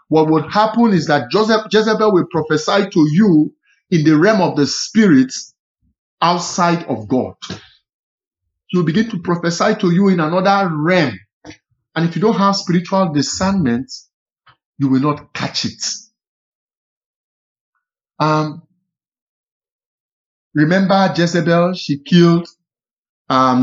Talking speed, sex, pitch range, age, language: 120 wpm, male, 145-190 Hz, 50-69, English